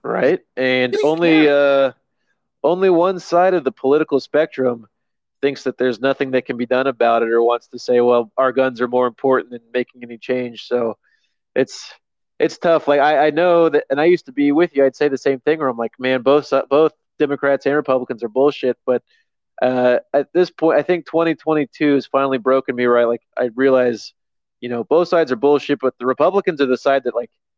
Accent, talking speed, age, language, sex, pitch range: American, 210 wpm, 20-39, English, male, 125-150 Hz